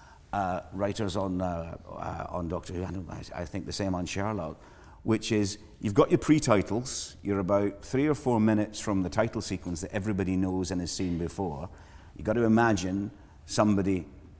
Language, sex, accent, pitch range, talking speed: English, male, British, 90-110 Hz, 185 wpm